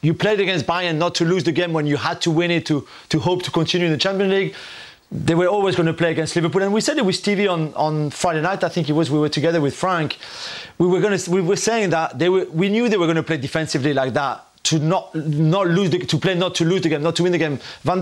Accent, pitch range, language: French, 160-185 Hz, English